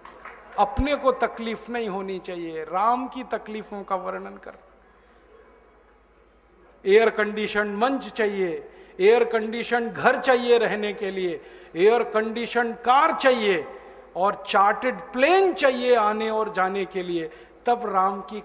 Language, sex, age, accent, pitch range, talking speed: Hindi, male, 40-59, native, 190-240 Hz, 125 wpm